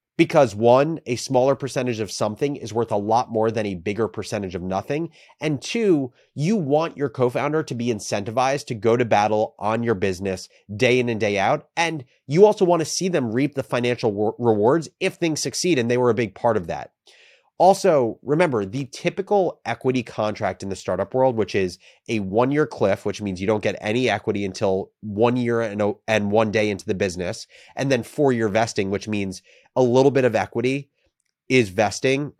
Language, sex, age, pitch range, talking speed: English, male, 30-49, 105-140 Hz, 195 wpm